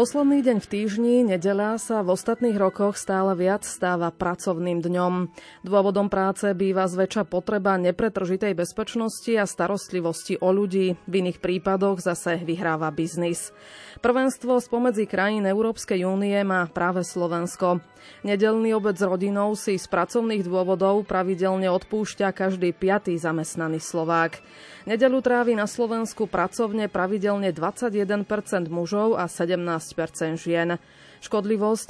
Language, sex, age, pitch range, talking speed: Slovak, female, 30-49, 180-210 Hz, 120 wpm